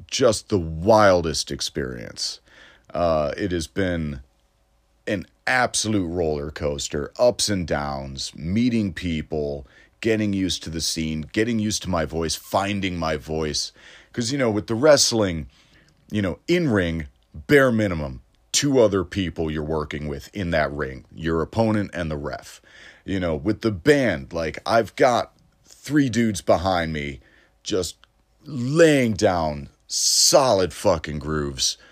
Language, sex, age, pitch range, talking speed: English, male, 40-59, 75-110 Hz, 135 wpm